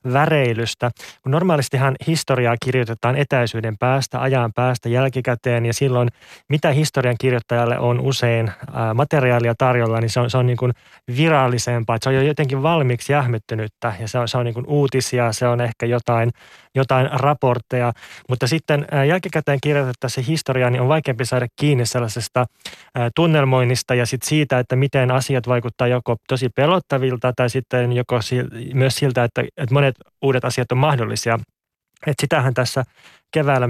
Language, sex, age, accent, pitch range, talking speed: Finnish, male, 20-39, native, 120-135 Hz, 150 wpm